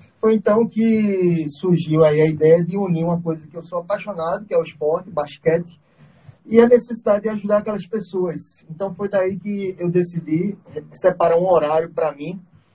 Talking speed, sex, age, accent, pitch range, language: 180 wpm, male, 20-39, Brazilian, 155-190 Hz, Portuguese